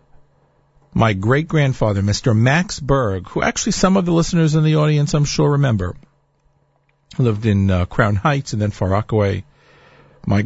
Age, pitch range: 50-69, 105-145 Hz